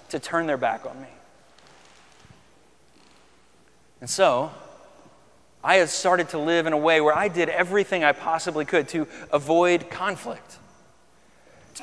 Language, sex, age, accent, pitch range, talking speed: English, male, 30-49, American, 130-180 Hz, 135 wpm